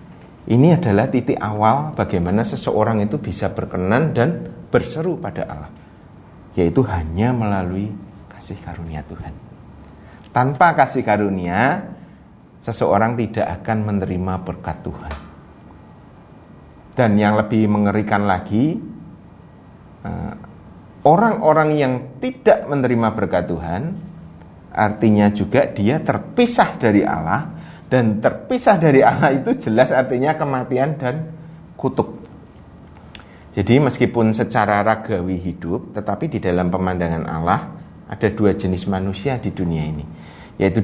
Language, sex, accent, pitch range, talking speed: Indonesian, male, native, 95-135 Hz, 105 wpm